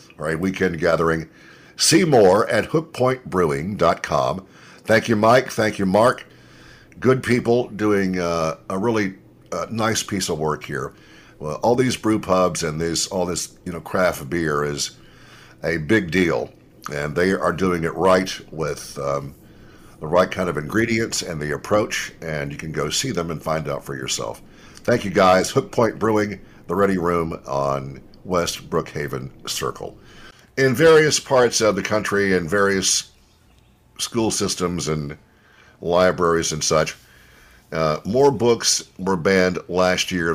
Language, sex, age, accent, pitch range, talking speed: English, male, 60-79, American, 80-100 Hz, 155 wpm